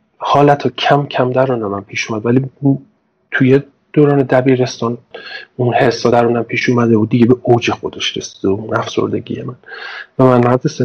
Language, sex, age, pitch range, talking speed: Persian, male, 40-59, 120-145 Hz, 155 wpm